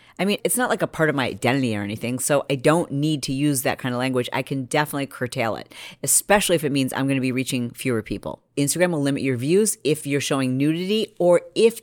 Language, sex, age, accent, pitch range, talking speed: English, female, 40-59, American, 130-170 Hz, 250 wpm